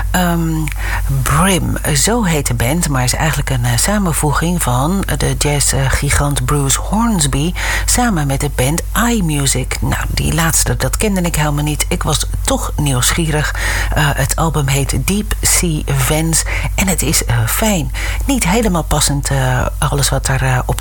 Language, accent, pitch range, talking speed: English, Dutch, 125-155 Hz, 160 wpm